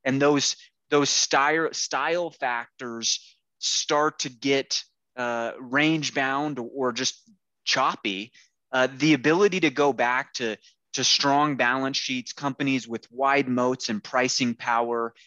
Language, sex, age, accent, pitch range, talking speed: English, male, 20-39, American, 120-145 Hz, 130 wpm